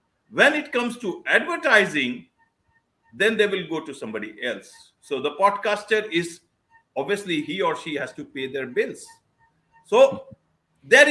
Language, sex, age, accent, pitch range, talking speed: English, male, 50-69, Indian, 195-285 Hz, 145 wpm